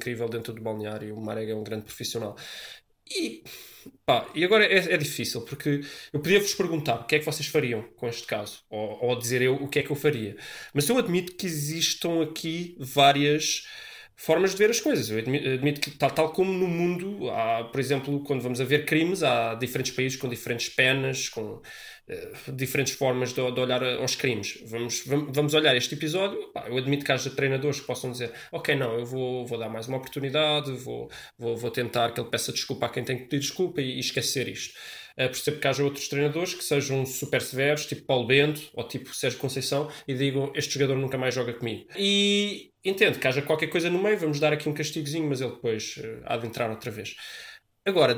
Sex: male